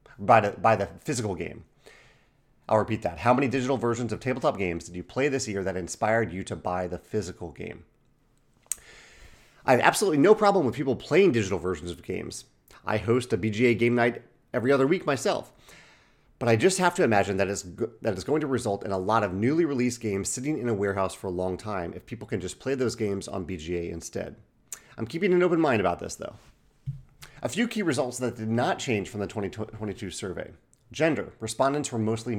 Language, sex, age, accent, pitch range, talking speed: English, male, 30-49, American, 100-135 Hz, 210 wpm